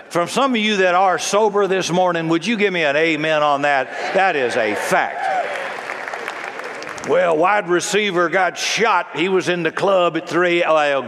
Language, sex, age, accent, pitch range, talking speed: English, male, 60-79, American, 135-175 Hz, 185 wpm